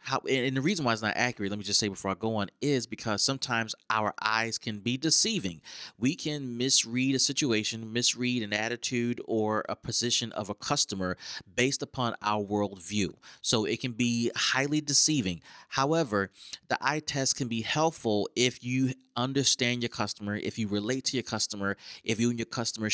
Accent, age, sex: American, 30-49, male